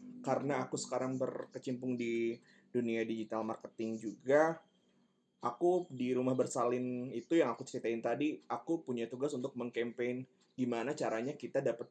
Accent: native